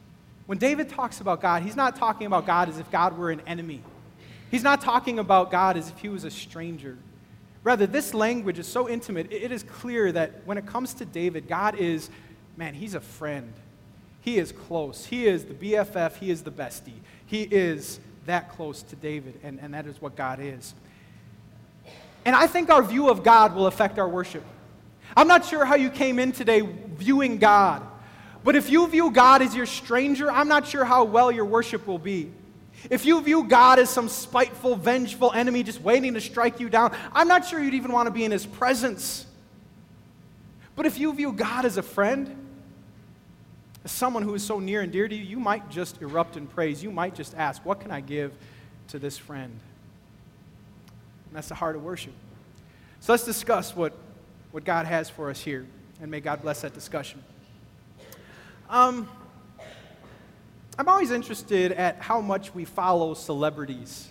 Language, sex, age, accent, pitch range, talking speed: English, male, 30-49, American, 160-245 Hz, 190 wpm